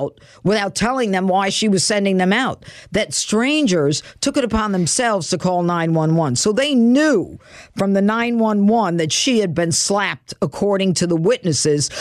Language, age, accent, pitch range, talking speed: English, 50-69, American, 165-240 Hz, 165 wpm